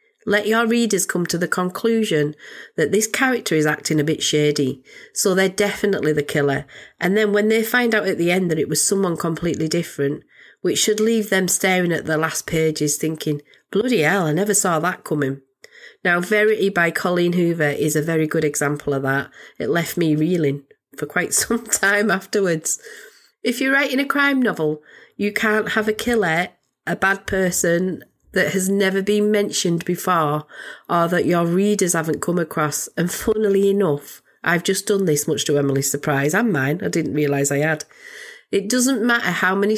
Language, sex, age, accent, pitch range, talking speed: English, female, 30-49, British, 155-205 Hz, 185 wpm